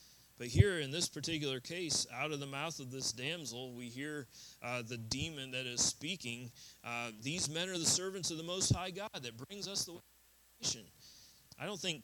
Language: English